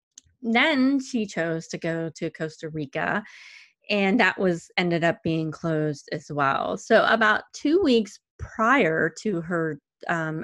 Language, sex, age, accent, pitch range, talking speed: English, female, 20-39, American, 155-180 Hz, 145 wpm